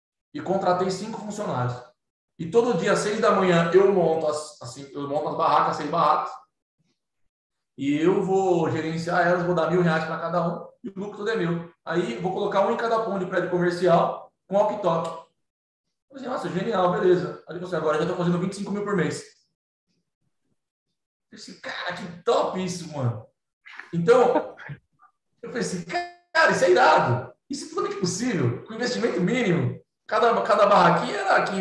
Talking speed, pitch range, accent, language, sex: 180 wpm, 145-190 Hz, Brazilian, Portuguese, male